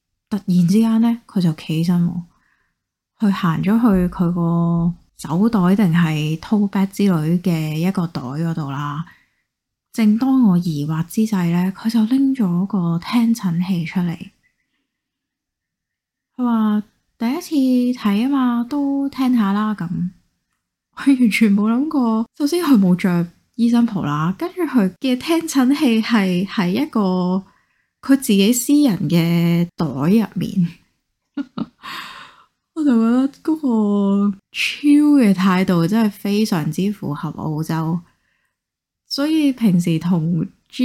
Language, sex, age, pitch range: Chinese, female, 20-39, 175-235 Hz